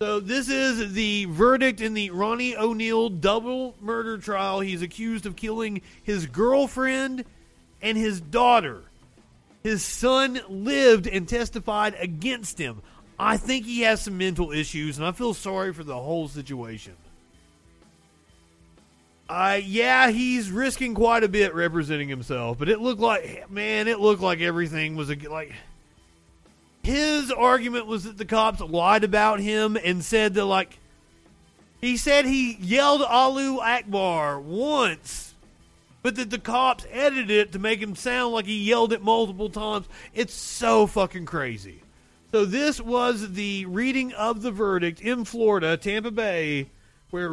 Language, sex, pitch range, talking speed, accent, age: English, male, 170-235 Hz, 145 wpm, American, 40-59